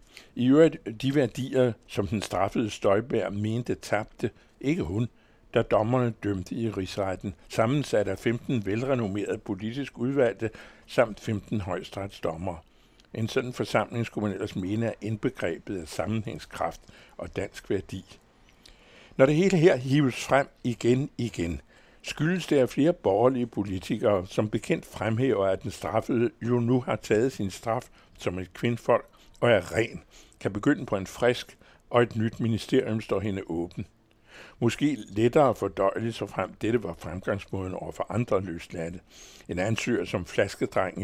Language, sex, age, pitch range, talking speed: Danish, male, 60-79, 95-120 Hz, 150 wpm